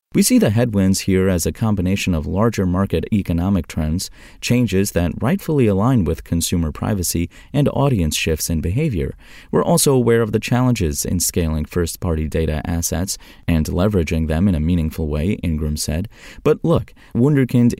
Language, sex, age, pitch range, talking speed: English, male, 30-49, 80-115 Hz, 160 wpm